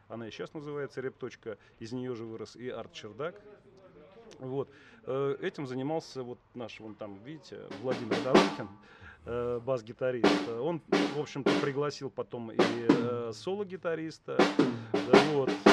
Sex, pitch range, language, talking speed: male, 115-150 Hz, Russian, 115 wpm